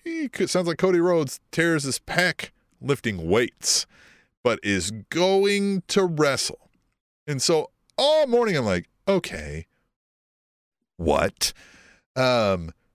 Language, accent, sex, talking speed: English, American, male, 110 wpm